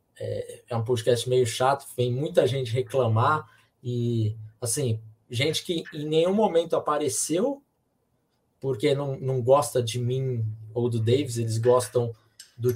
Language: Portuguese